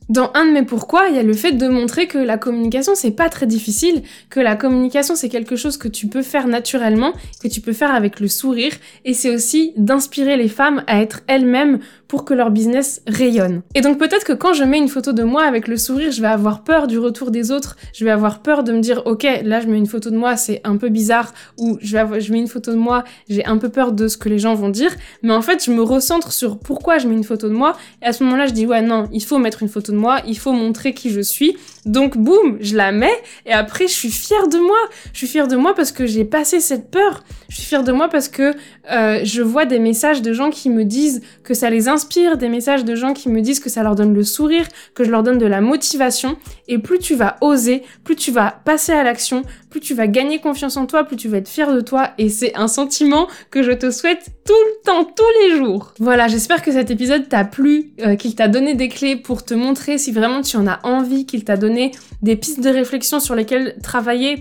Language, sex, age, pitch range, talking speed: French, female, 20-39, 225-285 Hz, 260 wpm